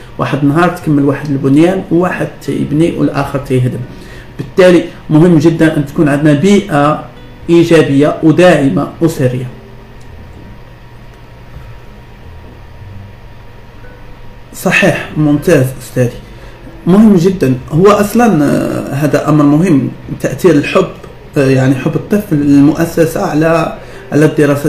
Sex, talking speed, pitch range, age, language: male, 90 wpm, 140-175 Hz, 50-69, Arabic